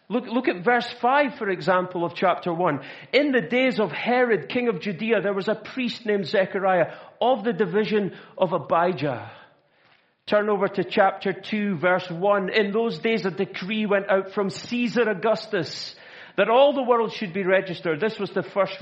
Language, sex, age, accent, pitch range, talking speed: English, male, 40-59, British, 160-215 Hz, 180 wpm